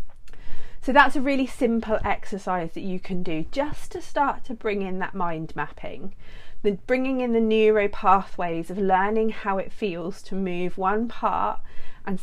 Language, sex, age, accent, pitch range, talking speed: English, female, 40-59, British, 180-220 Hz, 170 wpm